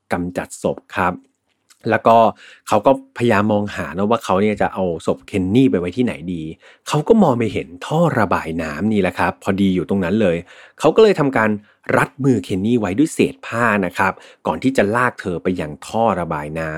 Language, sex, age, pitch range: Thai, male, 30-49, 95-125 Hz